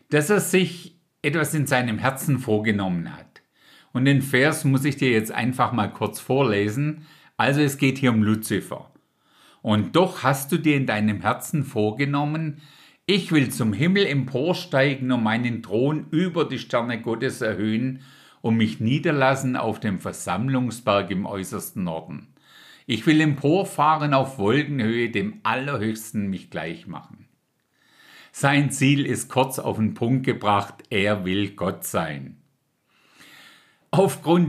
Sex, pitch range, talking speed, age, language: male, 110-150 Hz, 140 wpm, 50-69, German